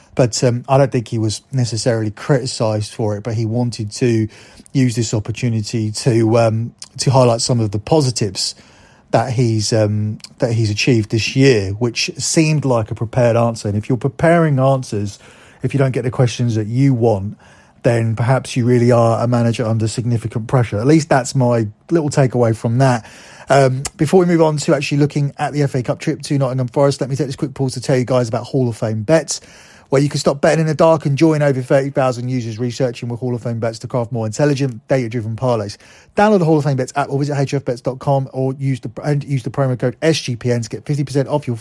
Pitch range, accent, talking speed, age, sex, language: 115-140 Hz, British, 215 wpm, 30-49, male, English